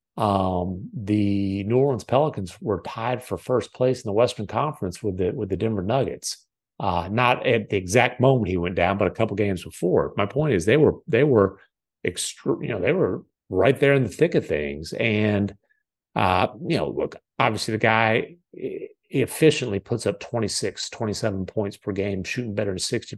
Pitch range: 100-135 Hz